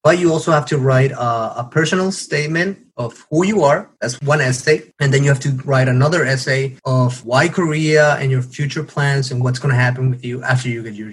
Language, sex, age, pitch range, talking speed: English, male, 30-49, 130-155 Hz, 230 wpm